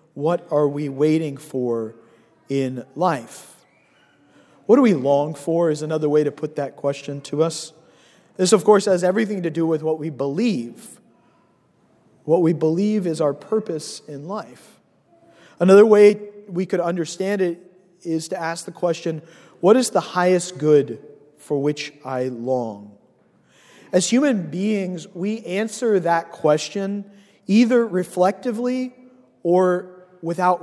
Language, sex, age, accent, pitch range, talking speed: English, male, 40-59, American, 155-200 Hz, 140 wpm